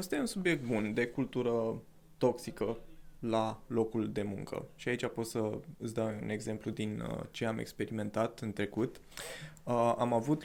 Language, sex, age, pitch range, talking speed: Romanian, male, 20-39, 115-155 Hz, 155 wpm